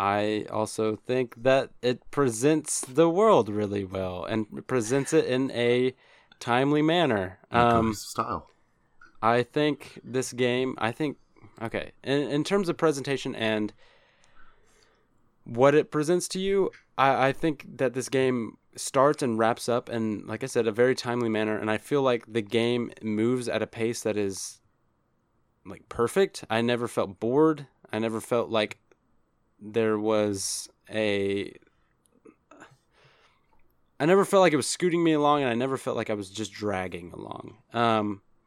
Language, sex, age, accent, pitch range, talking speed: English, male, 20-39, American, 110-130 Hz, 155 wpm